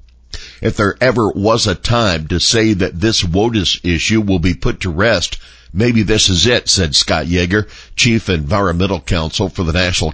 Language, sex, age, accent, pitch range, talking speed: English, male, 50-69, American, 80-105 Hz, 180 wpm